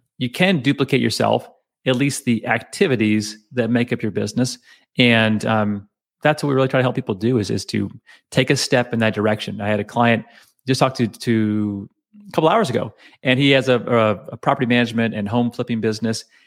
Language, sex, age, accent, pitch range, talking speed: English, male, 30-49, American, 110-135 Hz, 210 wpm